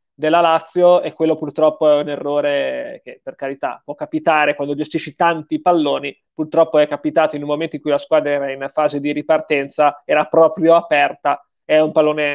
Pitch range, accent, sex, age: 150-175 Hz, native, male, 20-39